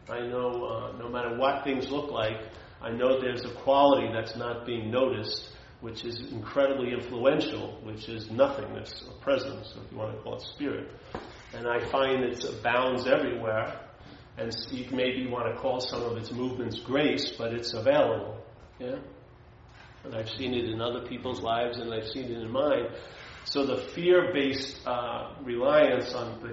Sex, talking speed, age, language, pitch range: male, 175 wpm, 40-59, English, 110-125 Hz